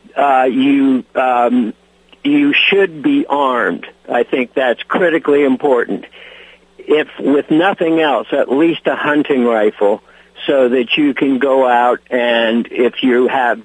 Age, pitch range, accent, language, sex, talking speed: 60-79, 125-200 Hz, American, English, male, 135 wpm